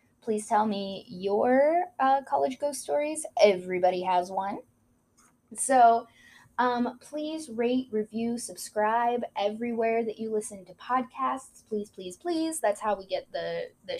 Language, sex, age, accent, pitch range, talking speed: English, female, 10-29, American, 195-265 Hz, 135 wpm